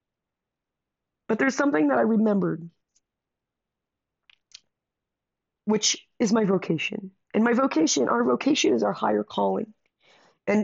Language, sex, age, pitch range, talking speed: English, female, 30-49, 185-225 Hz, 115 wpm